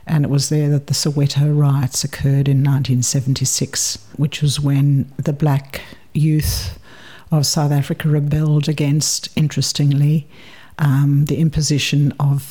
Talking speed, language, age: 130 wpm, English, 60-79